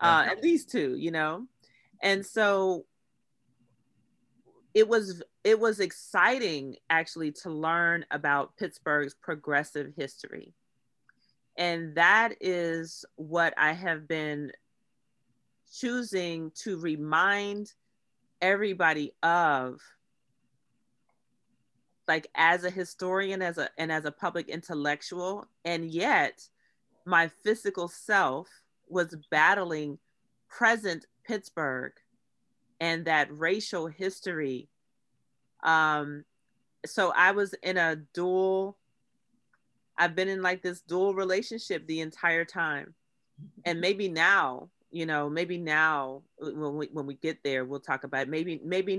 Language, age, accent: English, 30-49, American